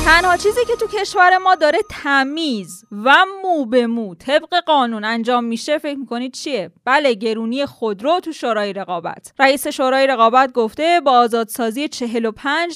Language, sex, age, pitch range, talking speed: Persian, female, 20-39, 225-300 Hz, 155 wpm